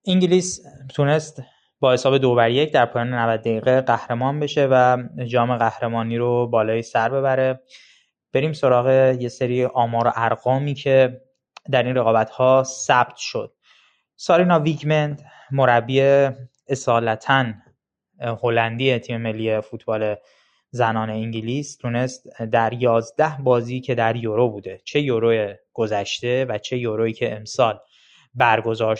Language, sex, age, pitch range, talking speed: Persian, male, 20-39, 115-135 Hz, 120 wpm